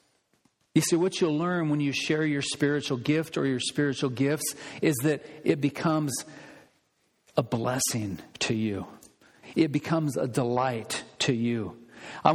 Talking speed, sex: 145 wpm, male